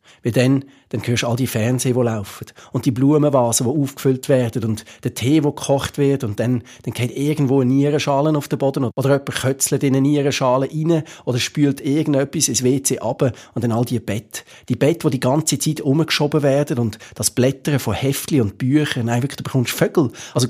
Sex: male